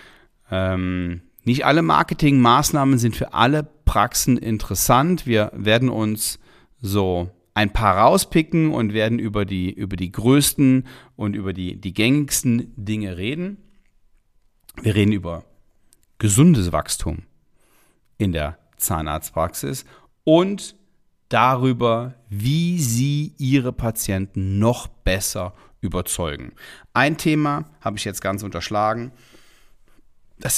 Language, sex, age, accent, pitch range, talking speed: German, male, 40-59, German, 95-130 Hz, 105 wpm